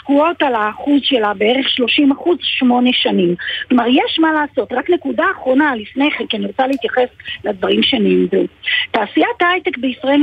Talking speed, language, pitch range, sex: 160 wpm, Hebrew, 225-305 Hz, female